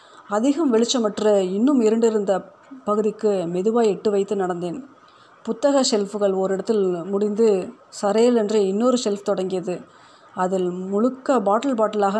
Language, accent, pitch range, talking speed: Tamil, native, 195-230 Hz, 110 wpm